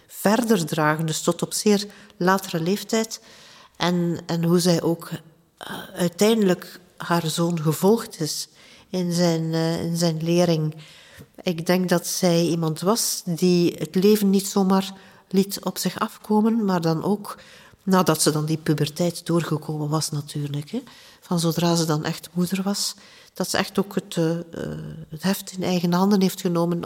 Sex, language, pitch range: female, Dutch, 170-210 Hz